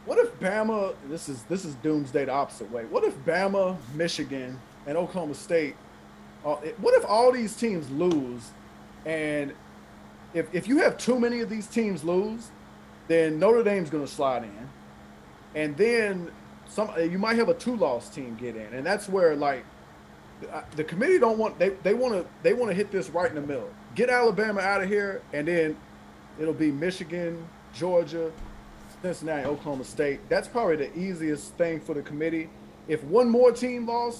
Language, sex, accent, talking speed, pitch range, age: English, male, American, 180 wpm, 135-195 Hz, 30-49